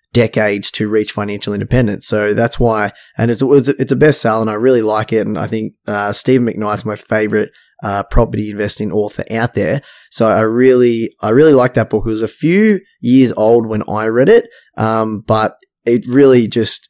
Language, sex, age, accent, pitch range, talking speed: English, male, 10-29, Australian, 110-130 Hz, 200 wpm